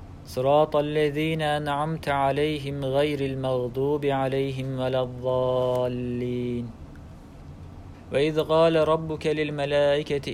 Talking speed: 75 wpm